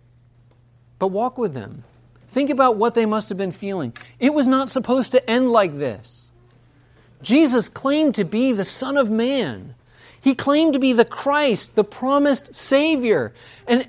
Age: 40-59